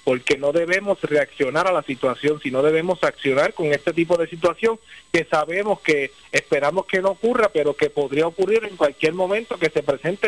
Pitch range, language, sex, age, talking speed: 135-175 Hz, Spanish, male, 40-59, 185 wpm